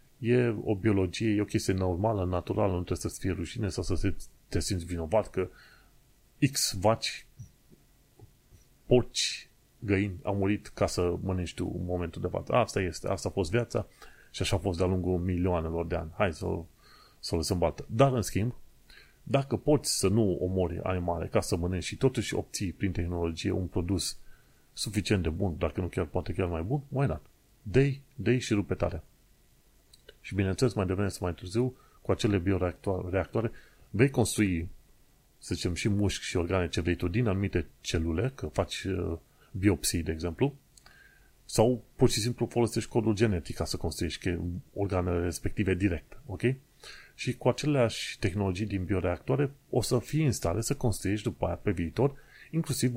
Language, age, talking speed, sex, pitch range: Romanian, 30-49, 170 wpm, male, 90-115 Hz